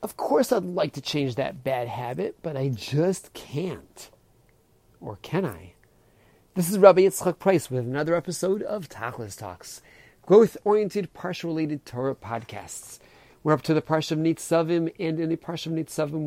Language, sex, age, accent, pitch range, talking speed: English, male, 40-59, American, 120-165 Hz, 155 wpm